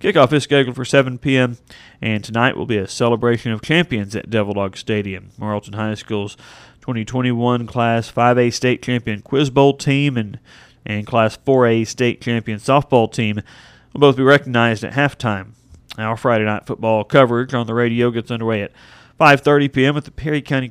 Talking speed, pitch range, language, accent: 175 wpm, 110-125 Hz, English, American